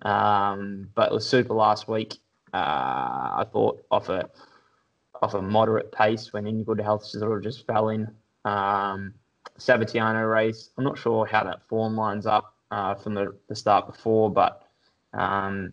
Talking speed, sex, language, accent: 170 wpm, male, English, Australian